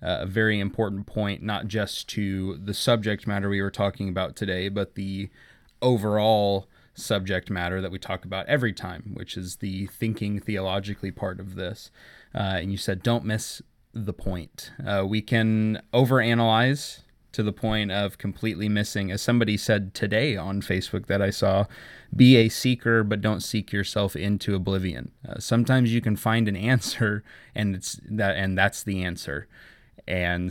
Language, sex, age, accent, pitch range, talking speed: English, male, 20-39, American, 95-110 Hz, 165 wpm